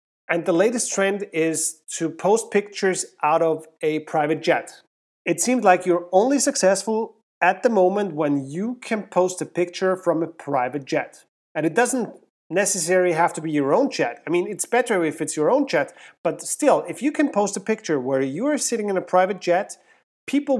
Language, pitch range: English, 160-220 Hz